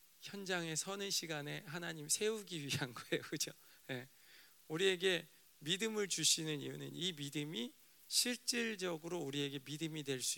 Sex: male